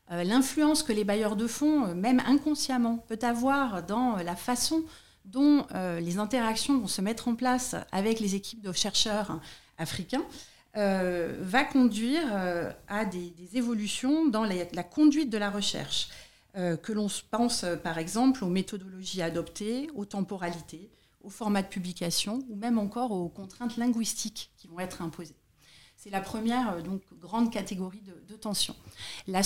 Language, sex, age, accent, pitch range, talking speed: French, female, 40-59, French, 185-240 Hz, 145 wpm